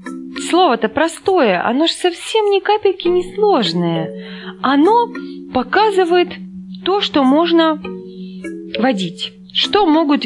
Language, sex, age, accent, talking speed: Russian, female, 20-39, native, 100 wpm